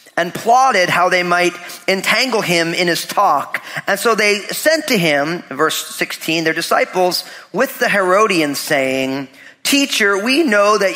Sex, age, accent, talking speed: male, 40-59, American, 155 wpm